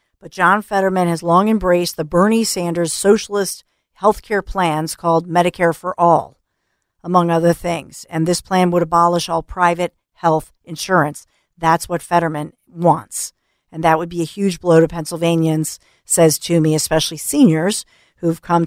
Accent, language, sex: American, English, female